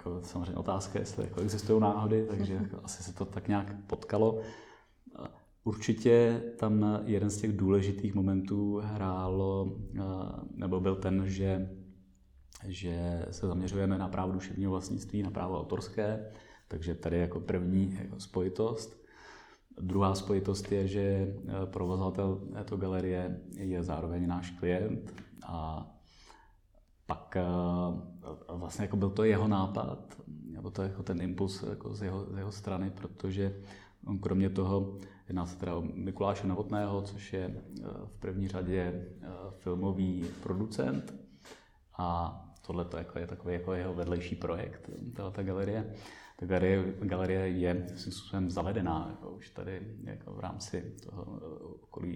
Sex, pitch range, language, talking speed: male, 90-100 Hz, Czech, 130 wpm